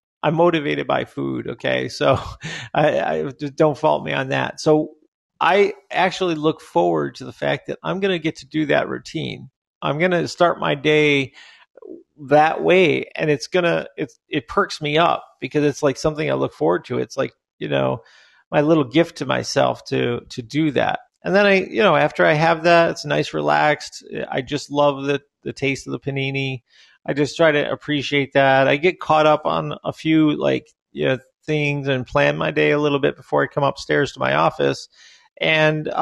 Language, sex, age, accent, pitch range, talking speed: English, male, 40-59, American, 140-165 Hz, 200 wpm